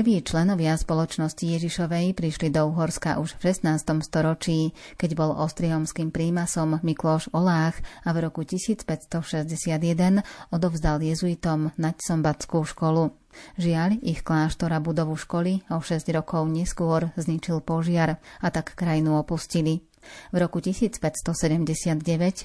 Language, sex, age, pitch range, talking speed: Slovak, female, 30-49, 160-175 Hz, 120 wpm